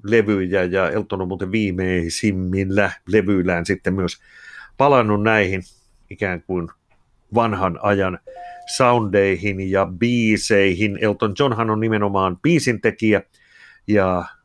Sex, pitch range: male, 95-120 Hz